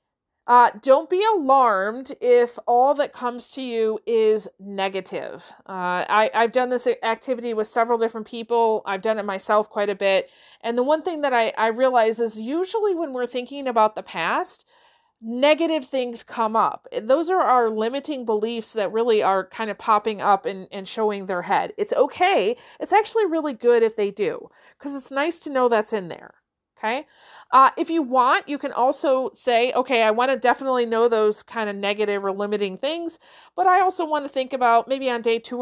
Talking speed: 195 wpm